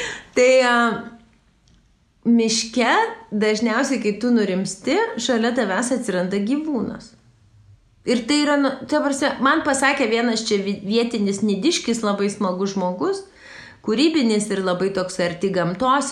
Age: 30-49